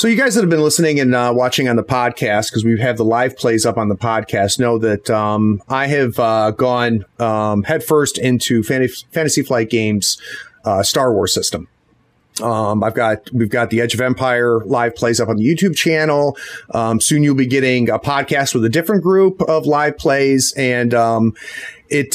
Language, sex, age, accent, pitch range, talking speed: English, male, 30-49, American, 115-145 Hz, 200 wpm